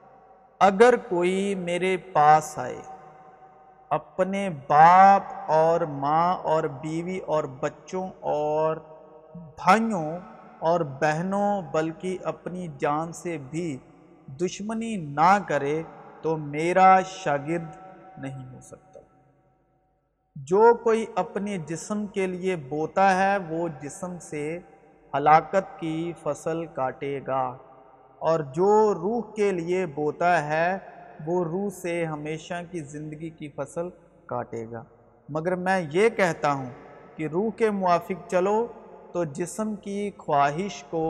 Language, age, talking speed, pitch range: Urdu, 50-69, 115 wpm, 150-190 Hz